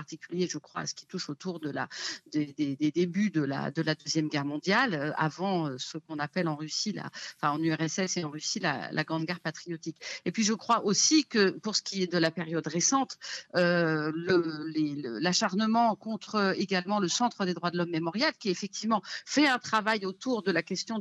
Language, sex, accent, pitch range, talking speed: French, female, French, 170-215 Hz, 215 wpm